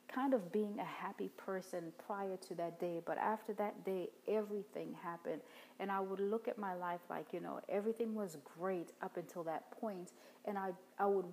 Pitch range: 170-210 Hz